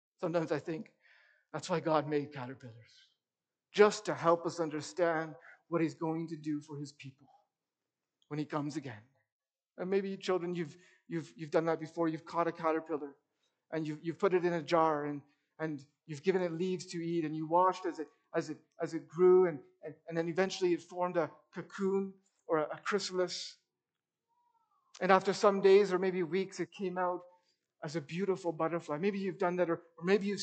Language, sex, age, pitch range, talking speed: English, male, 50-69, 165-230 Hz, 195 wpm